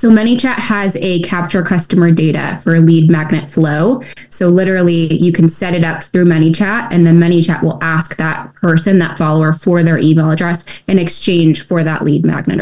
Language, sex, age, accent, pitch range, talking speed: English, female, 20-39, American, 155-180 Hz, 185 wpm